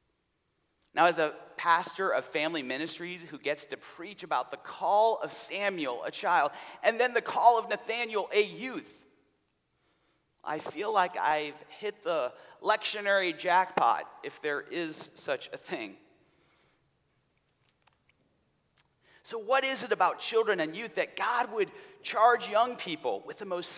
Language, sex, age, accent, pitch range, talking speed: English, male, 40-59, American, 175-245 Hz, 145 wpm